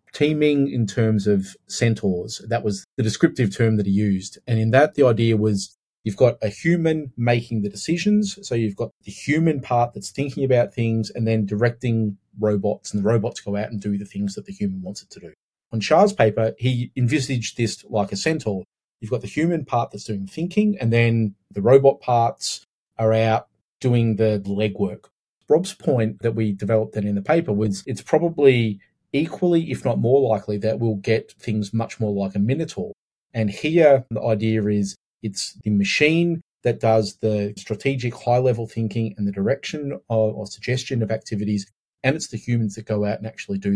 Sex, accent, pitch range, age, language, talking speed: male, Australian, 105-130 Hz, 30-49, English, 190 wpm